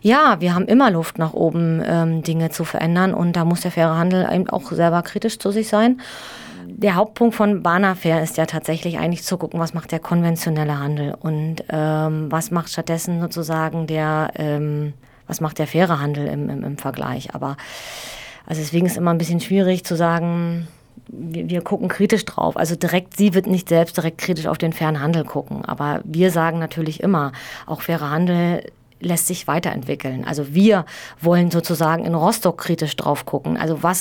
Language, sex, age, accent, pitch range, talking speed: German, female, 20-39, German, 160-185 Hz, 190 wpm